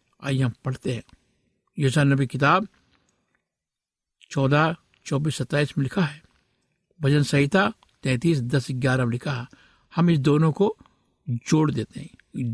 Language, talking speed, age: Hindi, 125 wpm, 60-79